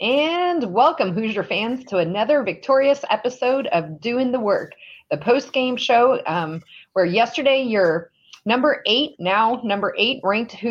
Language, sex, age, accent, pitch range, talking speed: English, female, 30-49, American, 180-245 Hz, 140 wpm